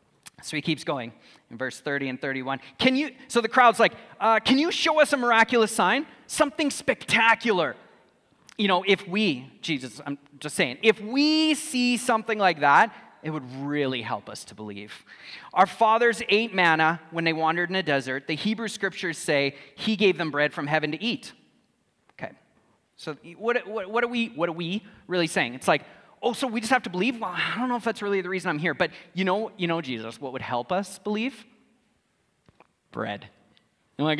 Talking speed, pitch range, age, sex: 200 wpm, 155-225 Hz, 30-49, male